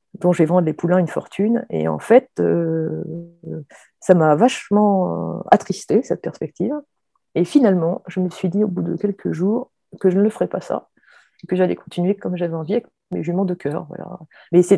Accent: French